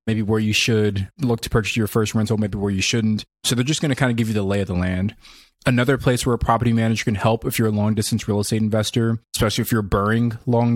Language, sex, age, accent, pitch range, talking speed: English, male, 20-39, American, 105-120 Hz, 275 wpm